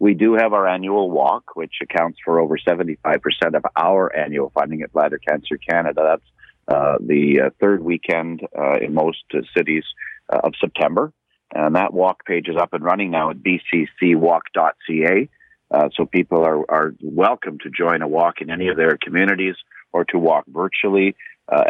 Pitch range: 85-105 Hz